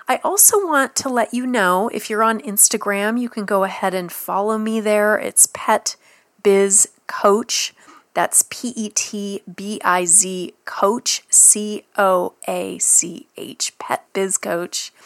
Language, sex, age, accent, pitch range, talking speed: English, female, 30-49, American, 185-240 Hz, 105 wpm